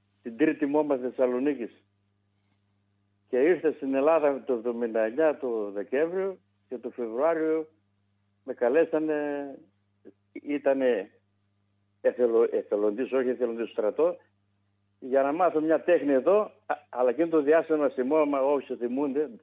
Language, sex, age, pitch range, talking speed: Greek, male, 60-79, 100-155 Hz, 115 wpm